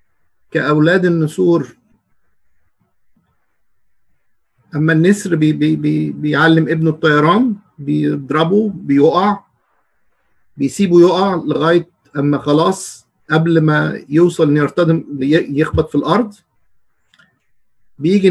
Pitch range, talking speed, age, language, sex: 145-175 Hz, 70 wpm, 50-69, Arabic, male